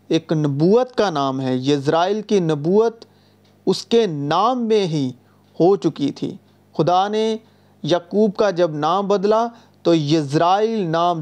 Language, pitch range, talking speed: Urdu, 145-190 Hz, 140 wpm